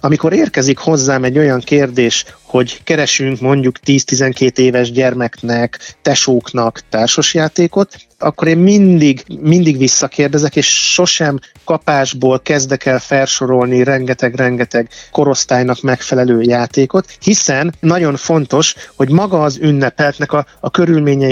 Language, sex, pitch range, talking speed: Hungarian, male, 130-160 Hz, 110 wpm